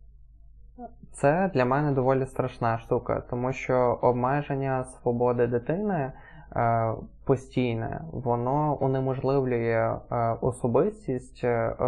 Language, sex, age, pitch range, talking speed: Ukrainian, male, 20-39, 120-135 Hz, 75 wpm